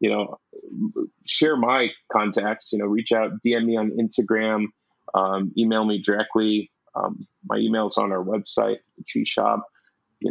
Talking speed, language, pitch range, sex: 150 wpm, English, 105-120 Hz, male